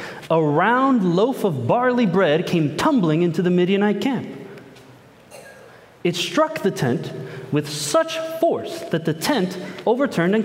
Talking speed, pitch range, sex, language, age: 140 wpm, 155-245 Hz, male, English, 30-49